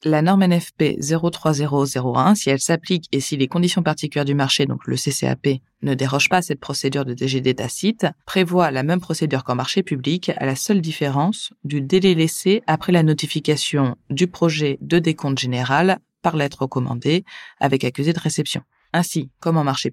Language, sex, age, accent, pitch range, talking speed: French, female, 20-39, French, 135-175 Hz, 175 wpm